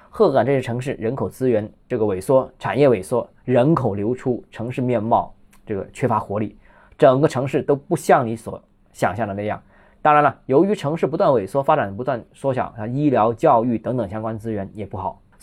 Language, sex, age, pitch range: Chinese, male, 20-39, 115-160 Hz